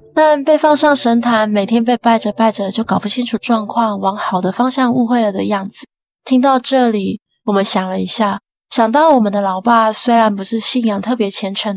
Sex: female